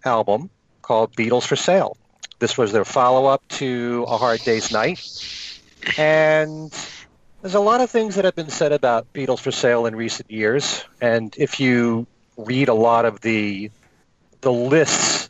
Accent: American